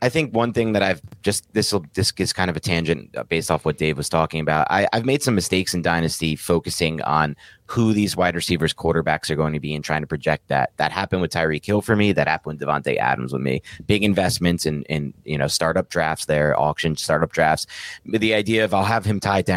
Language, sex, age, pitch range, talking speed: English, male, 30-49, 80-105 Hz, 235 wpm